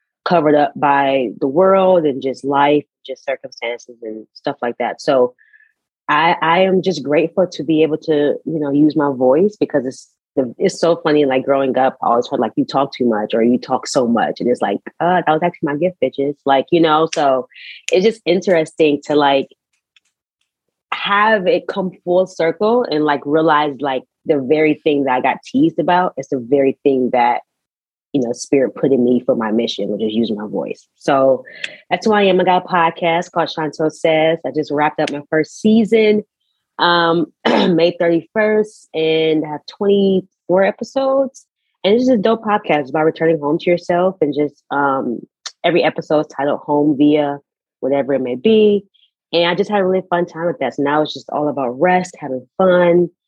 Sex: female